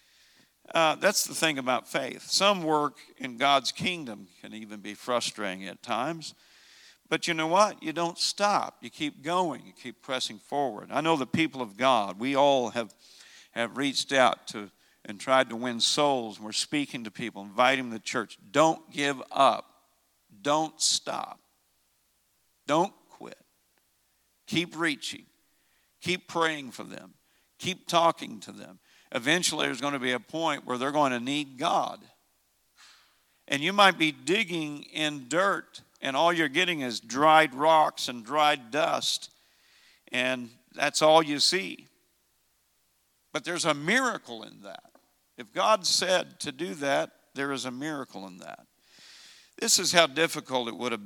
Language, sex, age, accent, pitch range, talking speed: English, male, 50-69, American, 120-160 Hz, 155 wpm